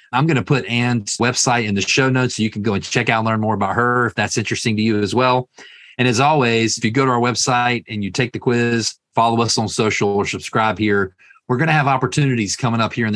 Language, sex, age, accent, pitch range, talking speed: English, male, 40-59, American, 110-125 Hz, 270 wpm